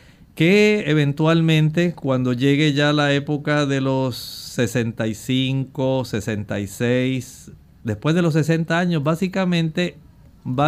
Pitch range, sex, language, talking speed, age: 120-150 Hz, male, Spanish, 100 wpm, 50-69